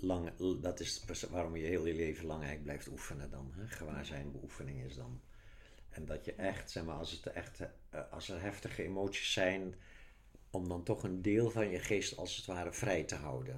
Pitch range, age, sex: 90-120 Hz, 60-79, male